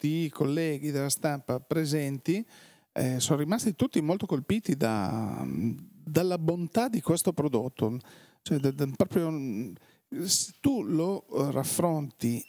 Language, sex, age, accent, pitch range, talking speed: Italian, male, 40-59, native, 135-165 Hz, 95 wpm